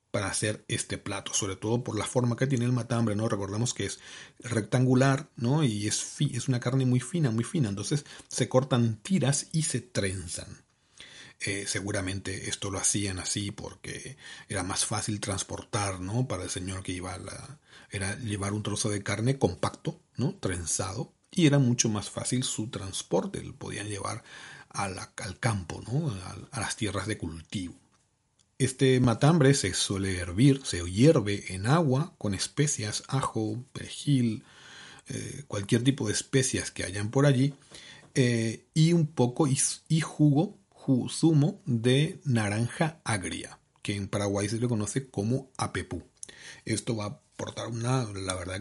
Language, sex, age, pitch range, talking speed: Spanish, male, 40-59, 100-135 Hz, 165 wpm